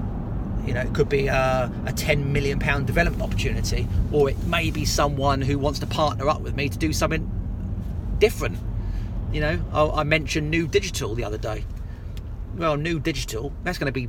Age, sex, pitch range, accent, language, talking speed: 30-49, male, 100-140 Hz, British, English, 190 wpm